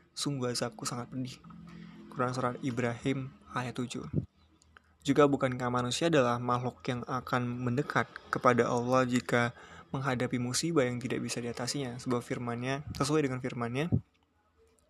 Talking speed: 125 wpm